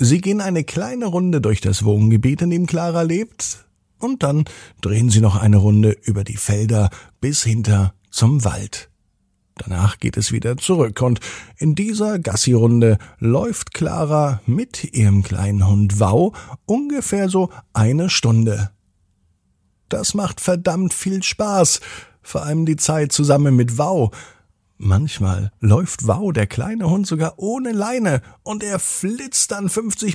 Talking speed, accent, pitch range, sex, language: 145 wpm, German, 105-160 Hz, male, German